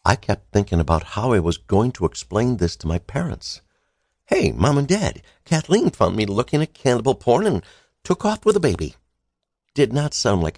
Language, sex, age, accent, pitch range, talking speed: English, male, 60-79, American, 85-120 Hz, 200 wpm